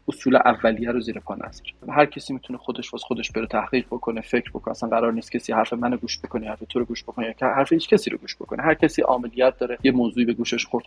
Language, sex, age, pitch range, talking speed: Persian, male, 30-49, 115-140 Hz, 250 wpm